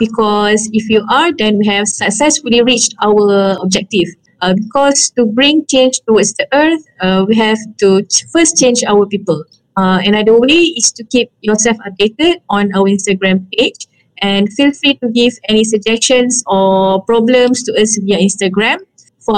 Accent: Malaysian